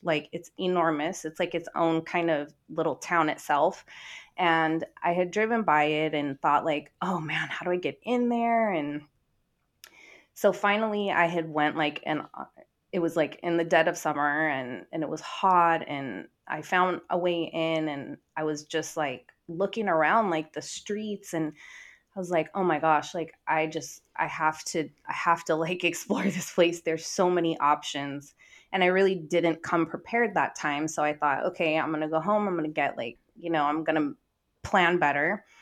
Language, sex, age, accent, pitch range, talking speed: English, female, 20-39, American, 155-185 Hz, 195 wpm